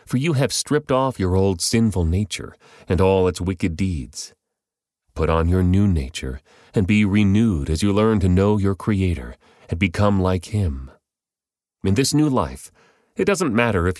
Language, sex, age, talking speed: English, male, 40-59, 175 wpm